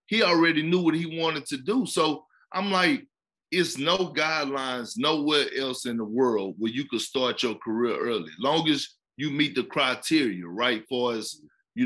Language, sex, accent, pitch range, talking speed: English, male, American, 135-200 Hz, 180 wpm